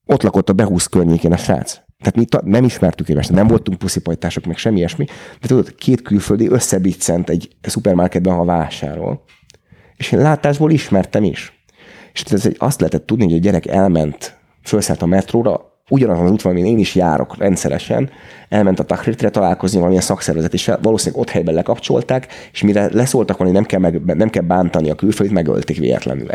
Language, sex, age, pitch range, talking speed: Hungarian, male, 30-49, 85-100 Hz, 175 wpm